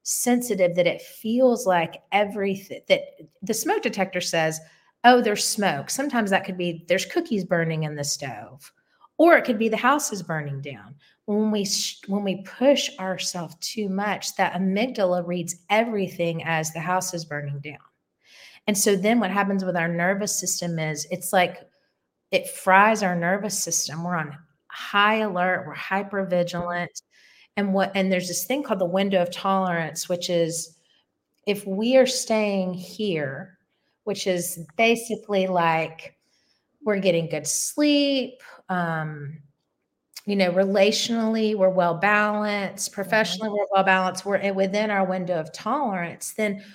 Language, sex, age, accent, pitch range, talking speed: English, female, 30-49, American, 170-210 Hz, 150 wpm